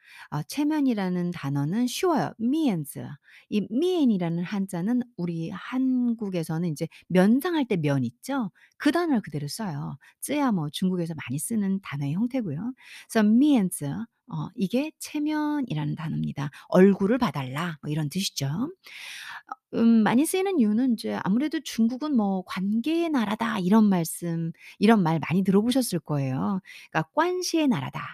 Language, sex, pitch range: Korean, female, 165-255 Hz